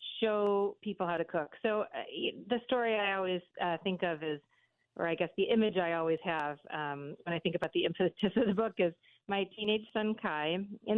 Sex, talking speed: female, 215 wpm